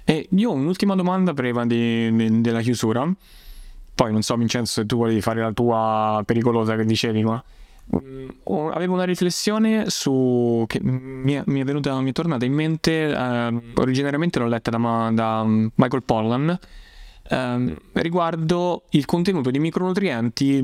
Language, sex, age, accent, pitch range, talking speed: Italian, male, 20-39, native, 115-140 Hz, 150 wpm